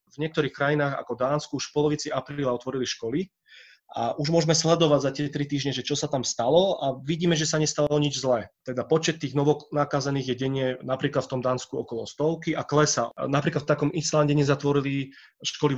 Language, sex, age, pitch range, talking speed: Slovak, male, 30-49, 130-155 Hz, 200 wpm